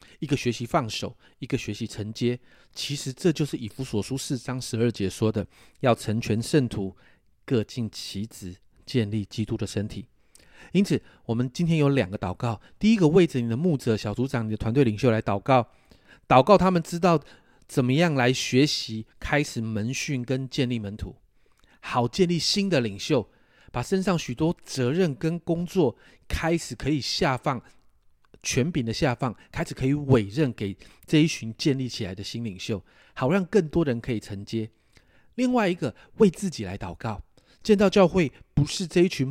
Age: 30-49